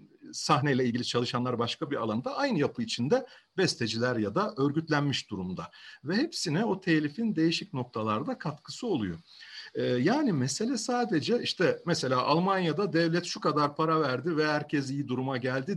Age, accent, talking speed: 50-69, native, 150 wpm